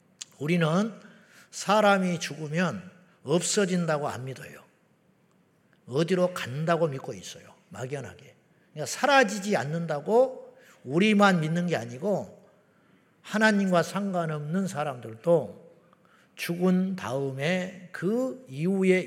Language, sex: Korean, male